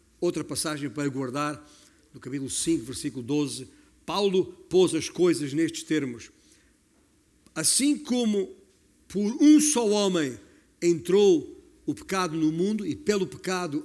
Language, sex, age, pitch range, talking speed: Portuguese, male, 50-69, 150-210 Hz, 125 wpm